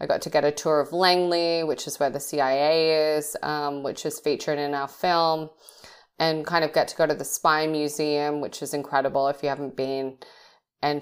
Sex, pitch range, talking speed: female, 145-170 Hz, 210 wpm